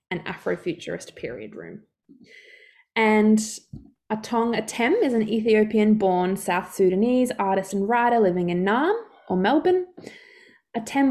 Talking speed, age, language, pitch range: 120 wpm, 20-39, English, 180-225 Hz